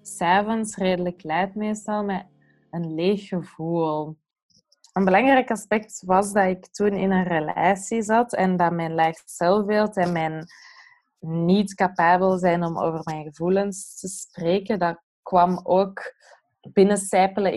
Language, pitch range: Dutch, 175-210 Hz